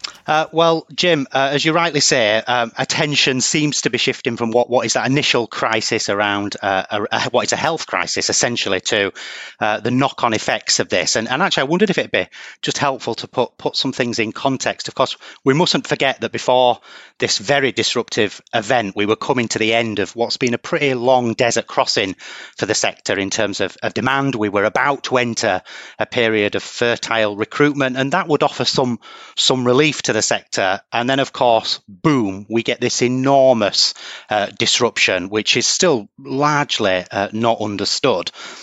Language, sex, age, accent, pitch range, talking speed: English, male, 30-49, British, 110-135 Hz, 195 wpm